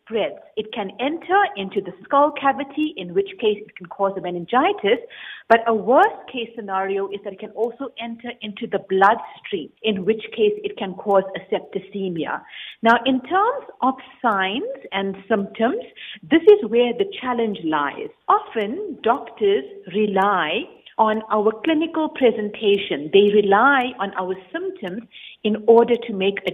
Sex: female